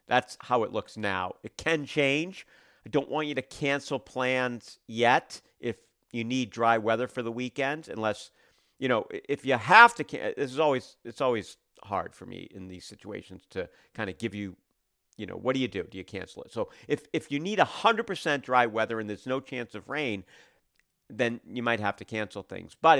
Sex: male